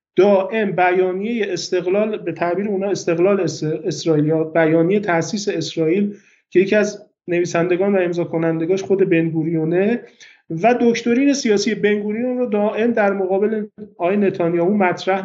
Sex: male